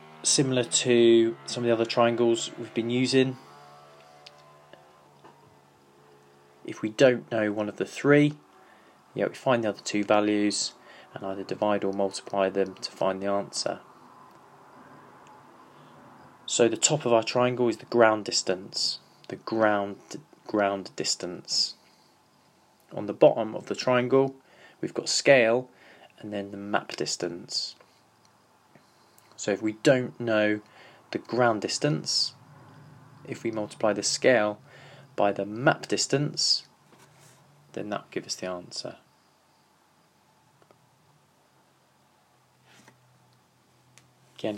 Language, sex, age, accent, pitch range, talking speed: English, male, 20-39, British, 95-120 Hz, 115 wpm